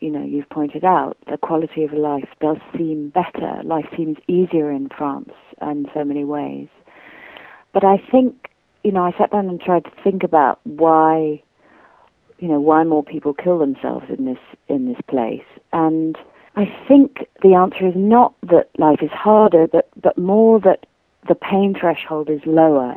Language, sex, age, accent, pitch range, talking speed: English, female, 40-59, British, 150-190 Hz, 175 wpm